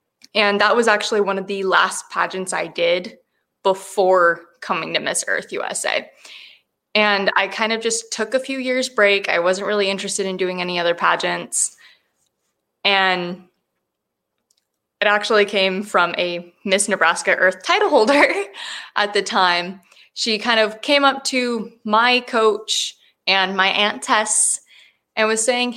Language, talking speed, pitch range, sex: English, 150 wpm, 190-230 Hz, female